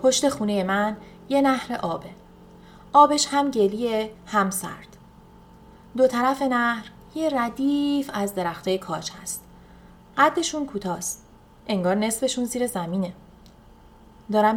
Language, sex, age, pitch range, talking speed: Persian, female, 30-49, 195-250 Hz, 110 wpm